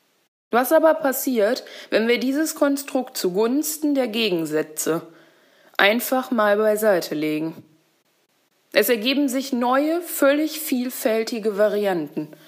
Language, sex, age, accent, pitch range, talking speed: German, female, 20-39, German, 185-245 Hz, 100 wpm